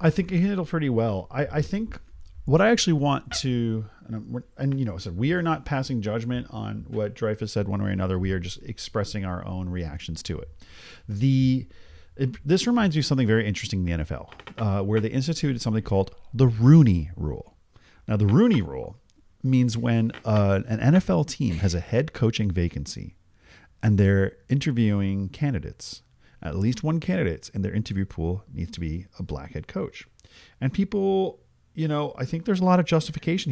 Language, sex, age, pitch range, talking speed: English, male, 40-59, 100-150 Hz, 195 wpm